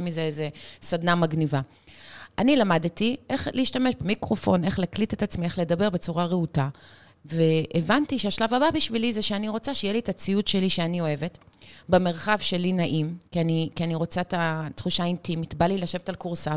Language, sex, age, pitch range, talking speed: Hebrew, female, 30-49, 175-220 Hz, 170 wpm